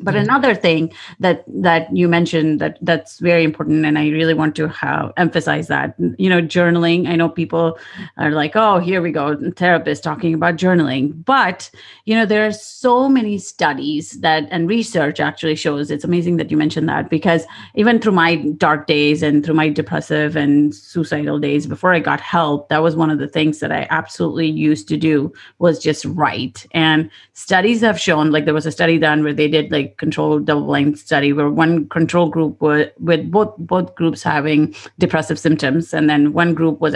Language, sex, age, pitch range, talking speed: English, female, 30-49, 150-175 Hz, 195 wpm